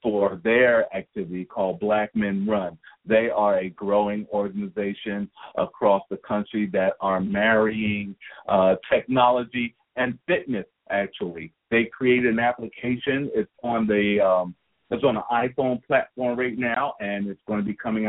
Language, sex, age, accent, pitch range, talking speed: English, male, 50-69, American, 105-125 Hz, 145 wpm